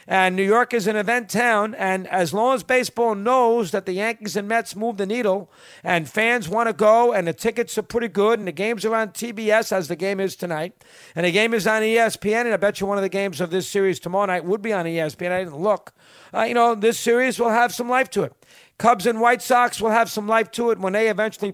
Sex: male